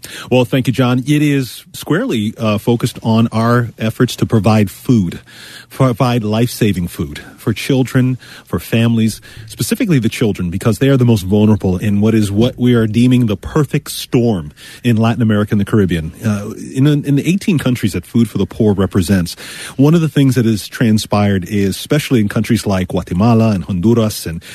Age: 40-59